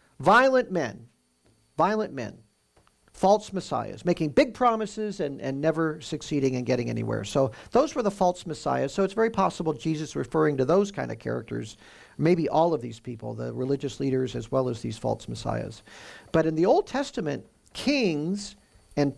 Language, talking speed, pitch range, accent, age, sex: English, 170 wpm, 130-180 Hz, American, 50-69, male